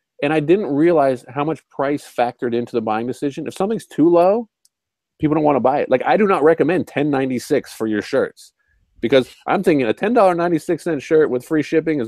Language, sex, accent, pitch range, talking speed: English, male, American, 120-160 Hz, 205 wpm